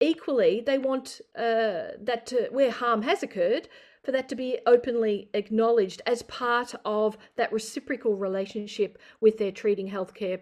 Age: 50-69